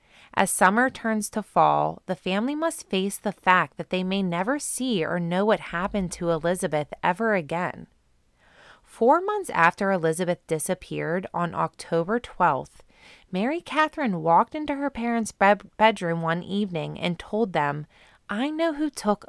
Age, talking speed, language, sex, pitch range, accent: 20-39, 150 wpm, English, female, 170-230 Hz, American